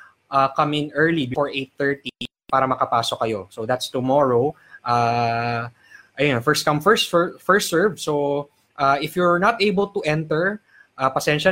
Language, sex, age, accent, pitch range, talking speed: English, male, 20-39, Filipino, 120-155 Hz, 150 wpm